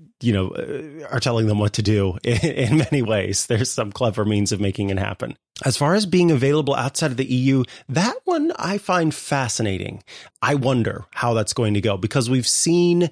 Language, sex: English, male